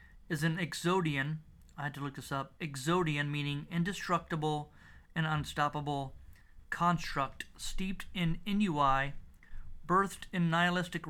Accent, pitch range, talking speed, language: American, 150-175 Hz, 115 wpm, English